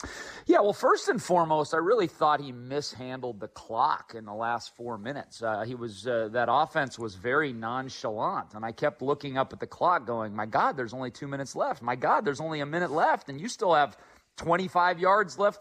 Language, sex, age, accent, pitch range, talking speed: English, male, 40-59, American, 130-180 Hz, 215 wpm